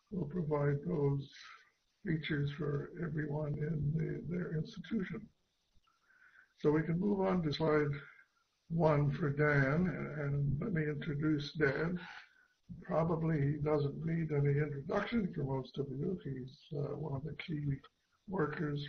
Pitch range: 145-170 Hz